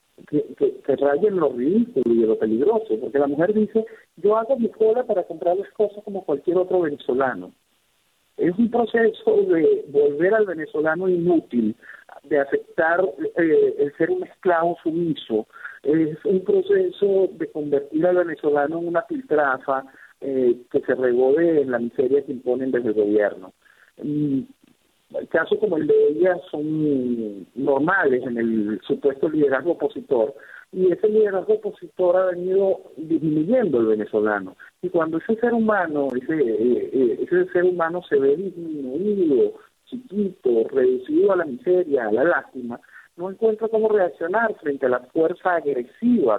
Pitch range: 140-230 Hz